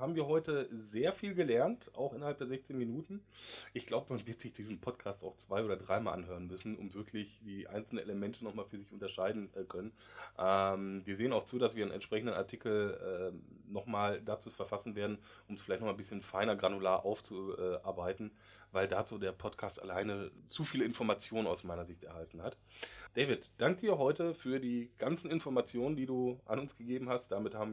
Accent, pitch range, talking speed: German, 100-135 Hz, 195 wpm